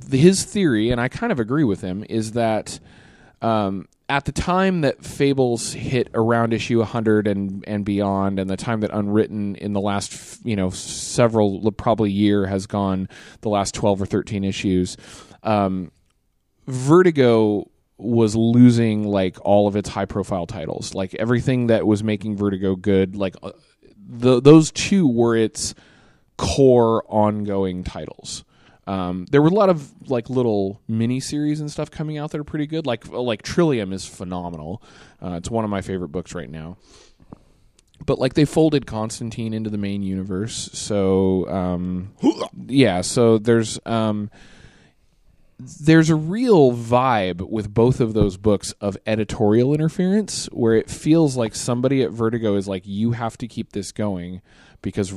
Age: 20-39